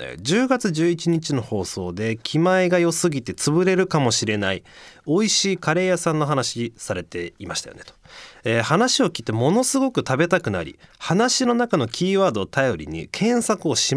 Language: Japanese